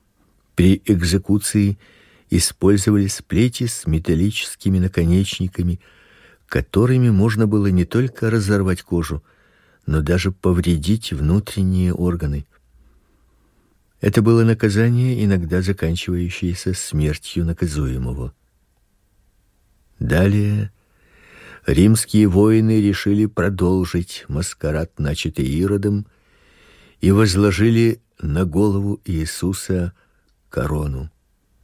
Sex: male